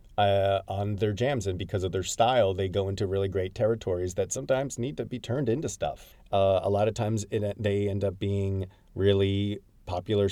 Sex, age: male, 30-49